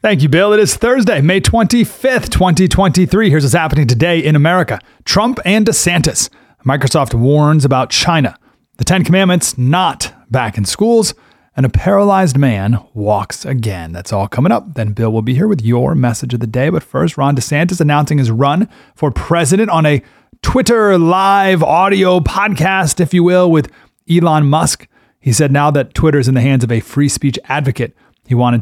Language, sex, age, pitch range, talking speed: English, male, 30-49, 120-180 Hz, 180 wpm